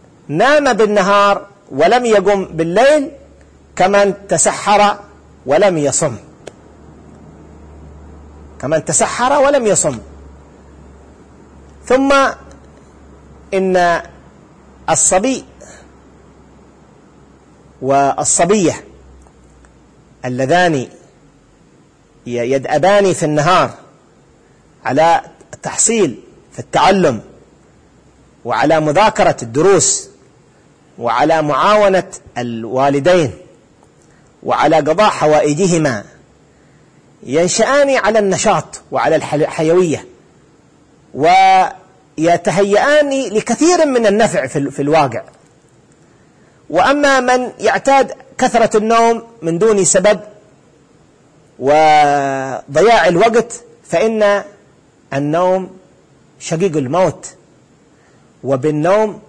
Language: Arabic